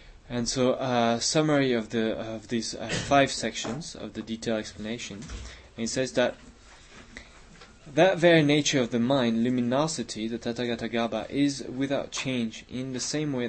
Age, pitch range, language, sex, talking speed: 20-39, 110-125 Hz, English, male, 160 wpm